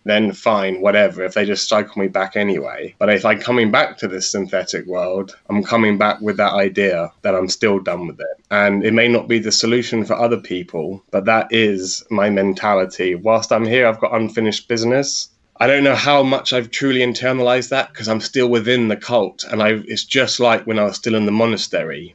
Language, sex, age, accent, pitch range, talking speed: English, male, 20-39, British, 100-115 Hz, 215 wpm